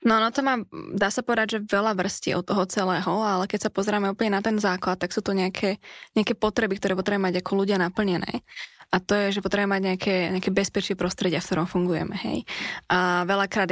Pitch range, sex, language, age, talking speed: 185-210 Hz, female, Slovak, 20-39, 215 wpm